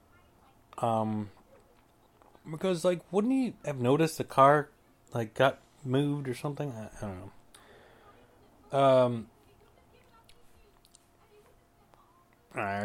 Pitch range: 105-140 Hz